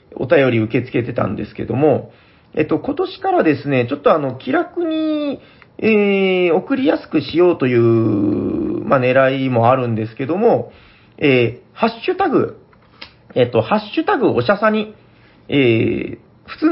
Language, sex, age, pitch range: Japanese, male, 40-59, 120-190 Hz